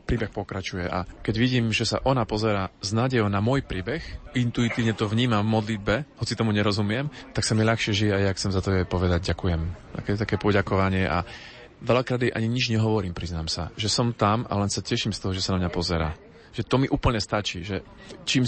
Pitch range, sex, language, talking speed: 100-120 Hz, male, Slovak, 215 wpm